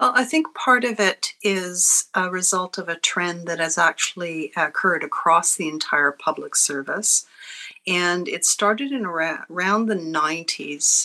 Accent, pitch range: American, 160-195 Hz